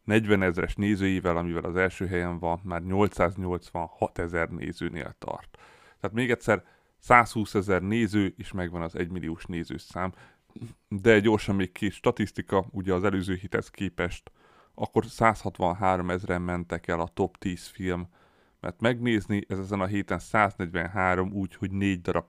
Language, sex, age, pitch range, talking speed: Hungarian, male, 30-49, 90-100 Hz, 150 wpm